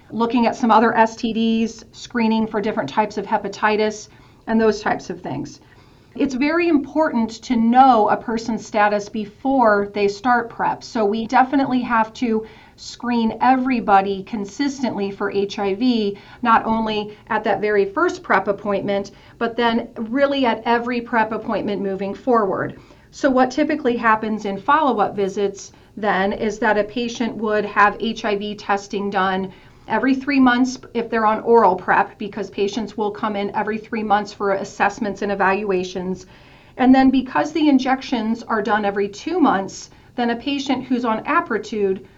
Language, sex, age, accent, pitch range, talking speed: English, female, 40-59, American, 200-240 Hz, 155 wpm